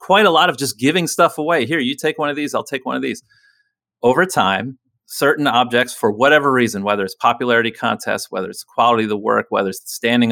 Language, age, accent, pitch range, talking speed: English, 30-49, American, 120-160 Hz, 235 wpm